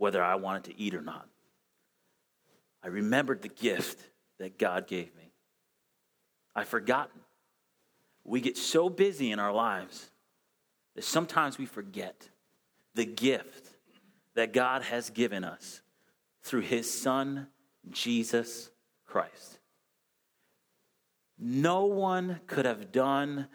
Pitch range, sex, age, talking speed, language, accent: 120-185 Hz, male, 30-49, 115 wpm, English, American